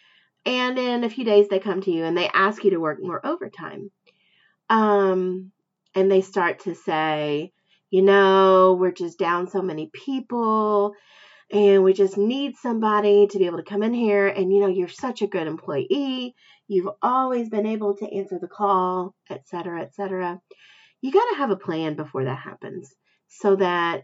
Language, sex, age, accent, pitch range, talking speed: English, female, 30-49, American, 180-235 Hz, 185 wpm